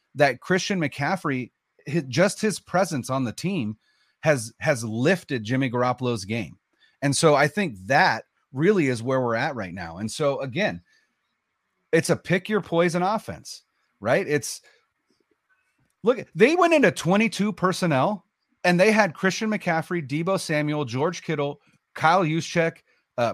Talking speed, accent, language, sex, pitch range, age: 145 wpm, American, English, male, 125-185 Hz, 30-49